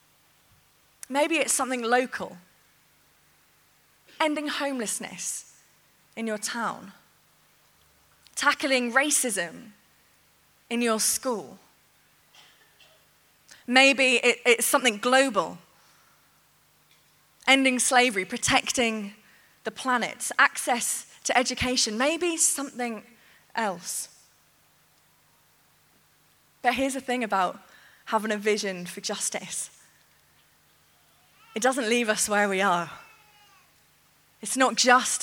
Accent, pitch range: British, 210-255 Hz